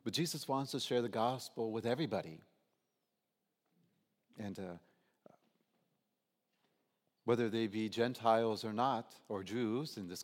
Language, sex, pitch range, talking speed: English, male, 105-150 Hz, 125 wpm